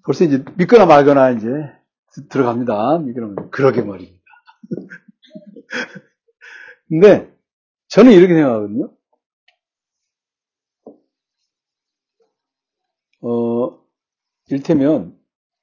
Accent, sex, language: native, male, Korean